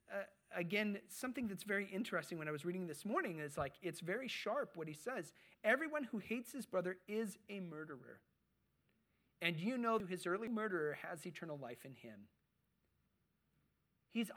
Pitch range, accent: 160-225 Hz, American